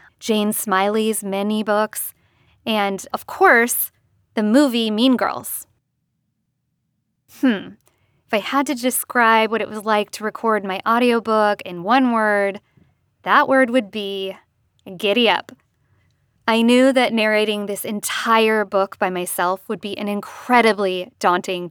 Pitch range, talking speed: 195-240 Hz, 130 wpm